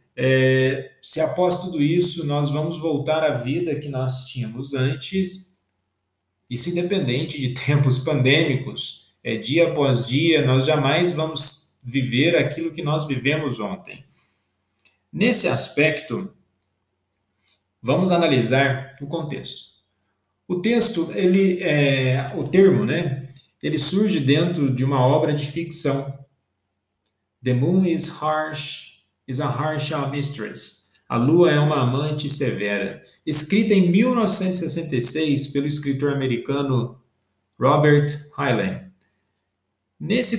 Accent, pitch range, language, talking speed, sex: Brazilian, 125-155 Hz, Portuguese, 105 wpm, male